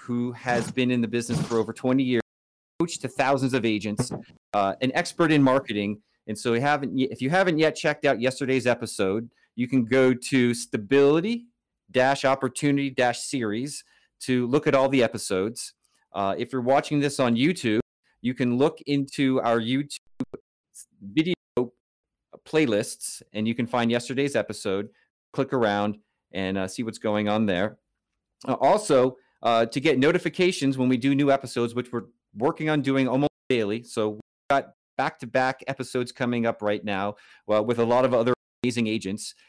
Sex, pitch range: male, 110-140 Hz